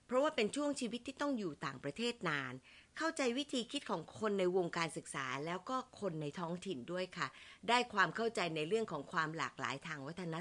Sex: female